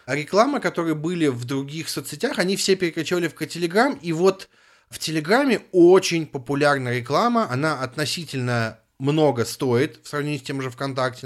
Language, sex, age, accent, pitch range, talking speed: Russian, male, 30-49, native, 125-170 Hz, 155 wpm